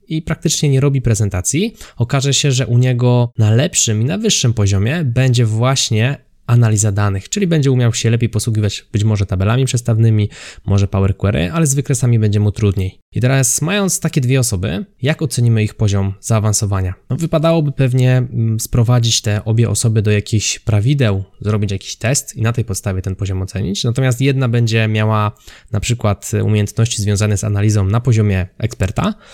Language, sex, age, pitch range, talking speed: Polish, male, 20-39, 100-125 Hz, 170 wpm